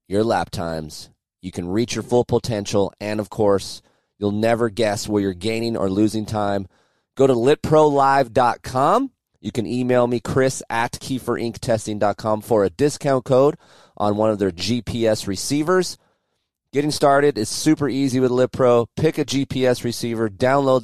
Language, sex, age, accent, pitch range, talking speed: English, male, 30-49, American, 100-125 Hz, 155 wpm